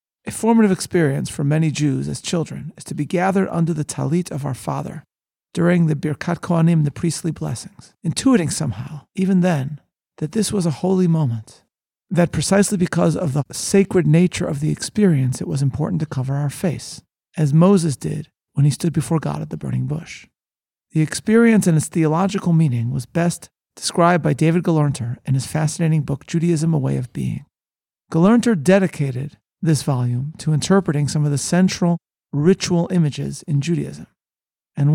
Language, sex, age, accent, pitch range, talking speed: English, male, 40-59, American, 140-175 Hz, 170 wpm